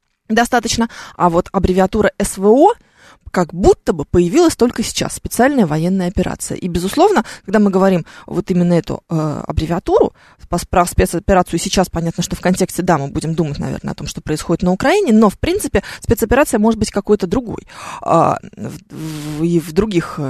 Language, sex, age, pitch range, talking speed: Russian, female, 20-39, 175-250 Hz, 155 wpm